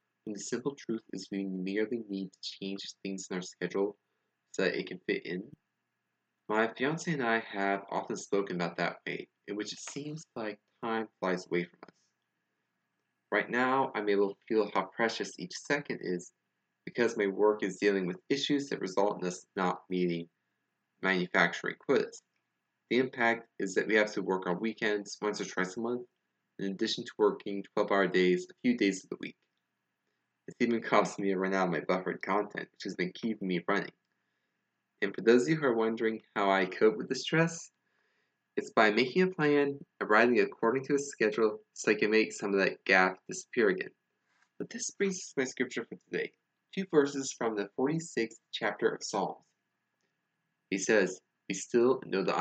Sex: male